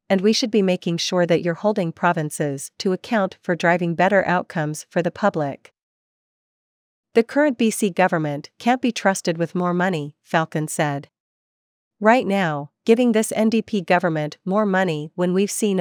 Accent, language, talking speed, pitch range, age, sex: American, English, 160 wpm, 160-205 Hz, 40-59, female